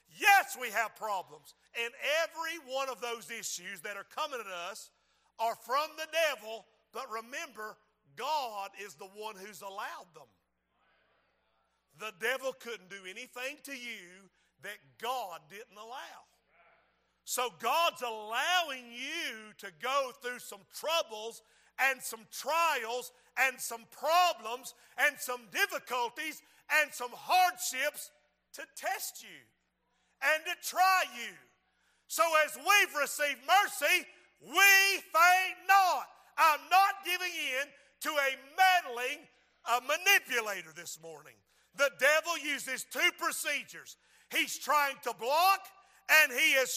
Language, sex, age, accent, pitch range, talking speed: English, male, 50-69, American, 215-315 Hz, 125 wpm